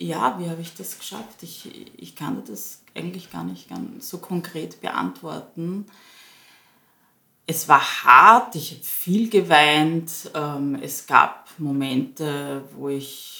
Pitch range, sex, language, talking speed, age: 140-180 Hz, female, German, 130 wpm, 30-49